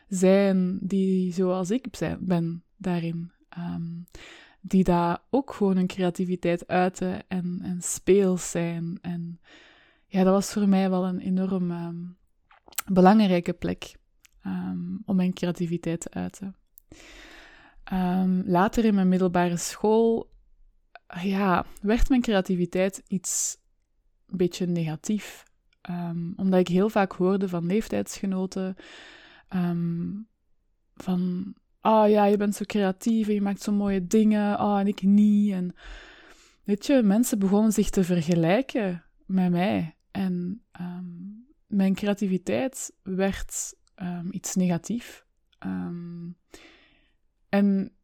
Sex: female